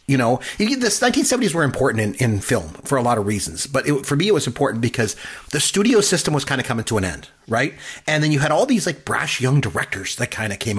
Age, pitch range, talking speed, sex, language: 30-49, 115-165 Hz, 260 wpm, male, English